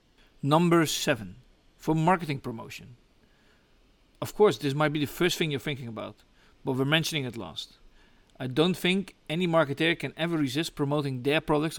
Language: English